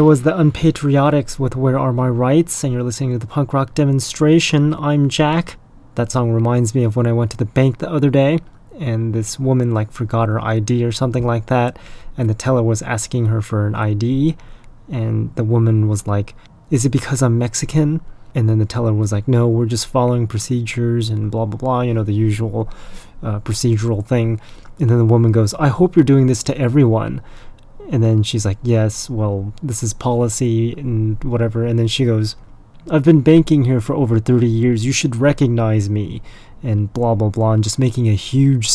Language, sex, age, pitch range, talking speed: English, male, 20-39, 110-130 Hz, 205 wpm